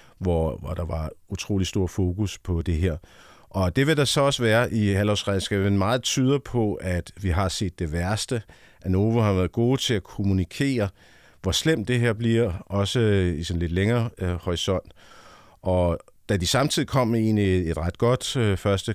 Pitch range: 90-115 Hz